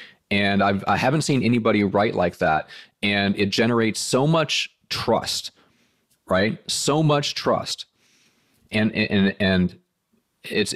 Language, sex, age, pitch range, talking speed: English, male, 30-49, 95-115 Hz, 130 wpm